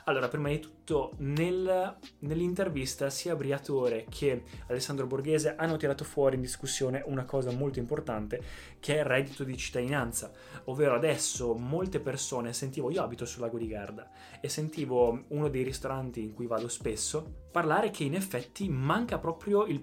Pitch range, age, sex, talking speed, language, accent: 125-165 Hz, 20-39, male, 155 wpm, Italian, native